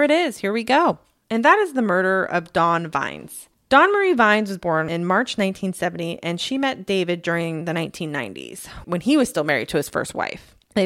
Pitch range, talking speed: 175-235 Hz, 210 wpm